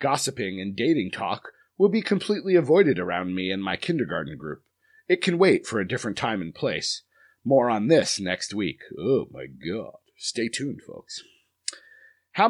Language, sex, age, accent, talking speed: English, male, 30-49, American, 170 wpm